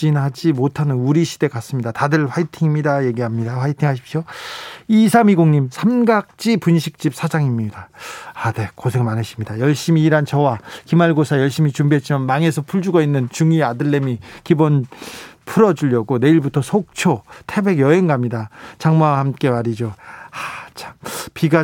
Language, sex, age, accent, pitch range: Korean, male, 40-59, native, 135-180 Hz